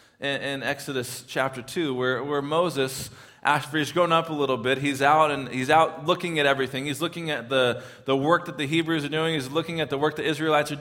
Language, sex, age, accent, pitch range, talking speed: English, male, 20-39, American, 110-155 Hz, 230 wpm